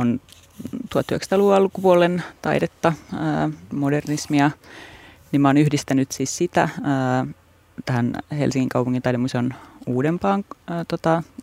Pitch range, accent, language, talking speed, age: 130-160 Hz, native, Finnish, 75 wpm, 30-49